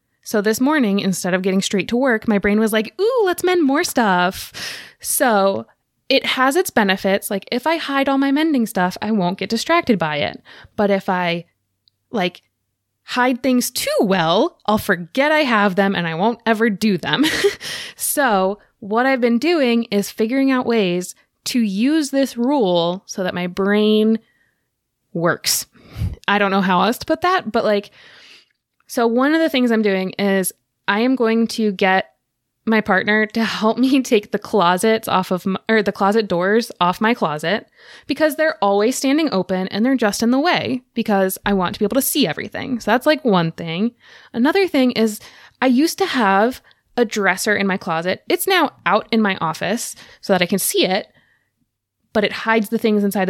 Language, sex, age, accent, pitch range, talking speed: English, female, 20-39, American, 195-260 Hz, 190 wpm